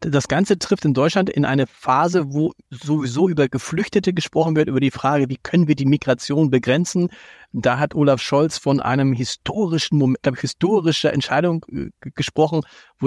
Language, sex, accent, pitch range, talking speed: German, male, German, 140-180 Hz, 170 wpm